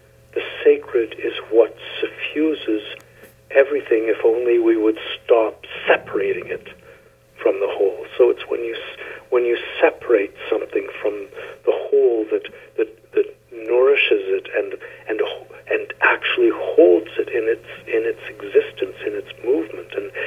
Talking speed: 140 wpm